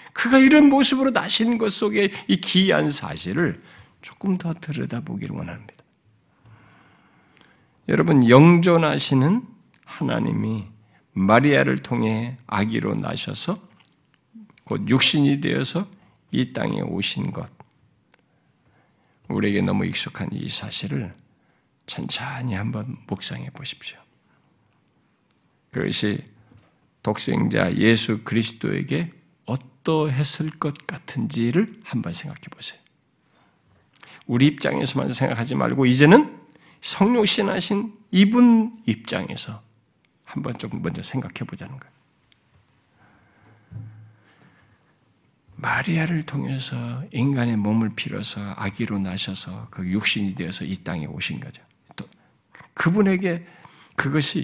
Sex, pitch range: male, 115-185 Hz